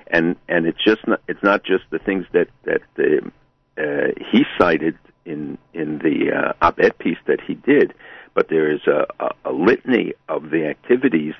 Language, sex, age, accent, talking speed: English, male, 60-79, American, 185 wpm